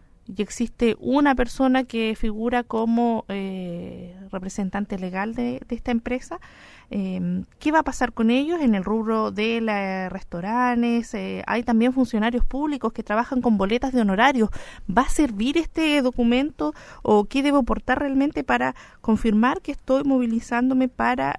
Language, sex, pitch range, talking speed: Spanish, female, 220-260 Hz, 150 wpm